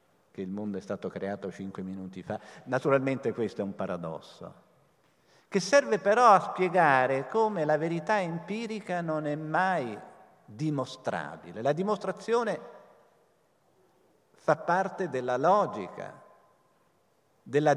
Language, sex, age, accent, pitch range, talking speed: Italian, male, 50-69, native, 130-175 Hz, 115 wpm